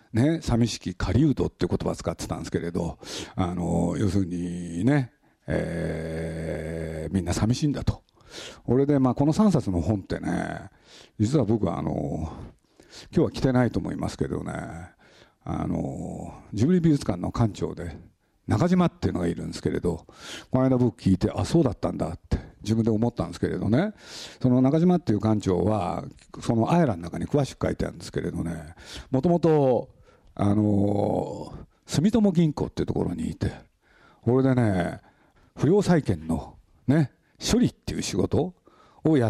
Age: 50-69